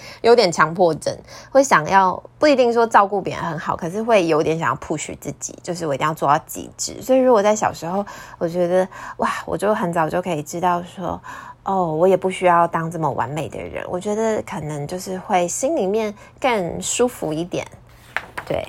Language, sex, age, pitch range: Chinese, female, 20-39, 165-225 Hz